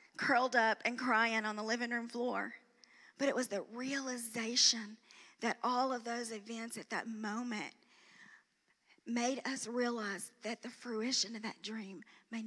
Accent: American